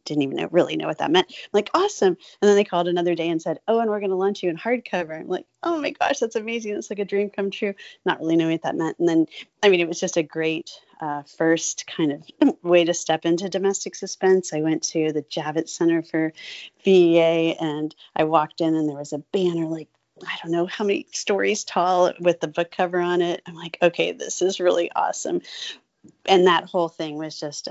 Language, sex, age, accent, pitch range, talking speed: English, female, 30-49, American, 160-200 Hz, 235 wpm